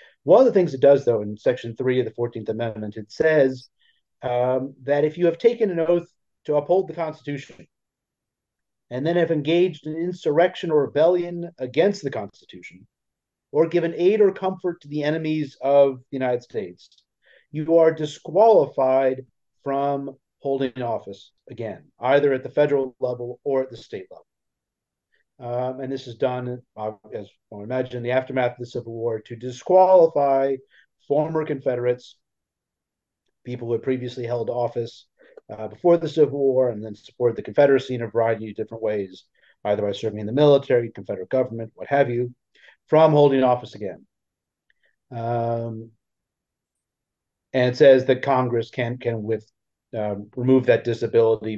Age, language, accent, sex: 40-59, English, American, male